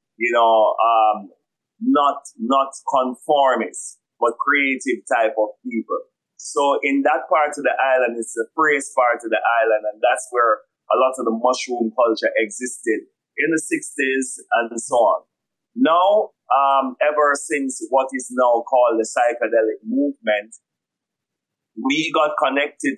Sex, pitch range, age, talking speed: male, 115-150 Hz, 30-49, 145 wpm